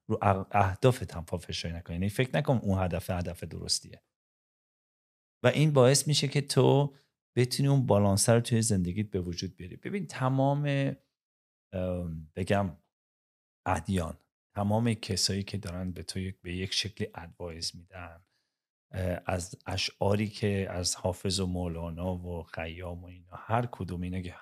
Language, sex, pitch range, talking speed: English, male, 90-110 Hz, 140 wpm